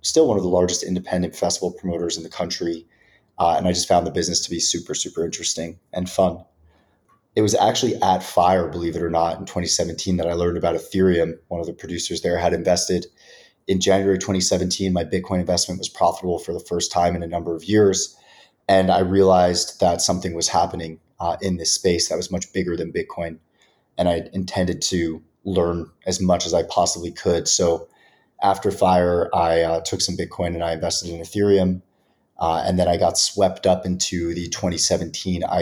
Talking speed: 195 wpm